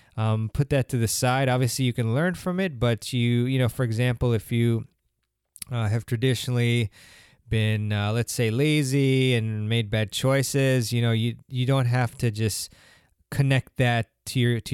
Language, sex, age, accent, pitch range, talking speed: English, male, 20-39, American, 110-130 Hz, 185 wpm